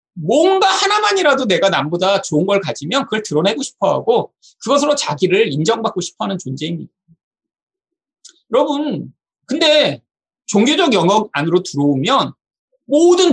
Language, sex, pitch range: Korean, male, 185-290 Hz